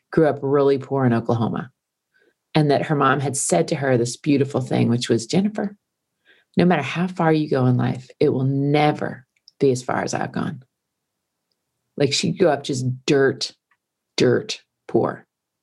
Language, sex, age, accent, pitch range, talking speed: English, female, 40-59, American, 125-155 Hz, 175 wpm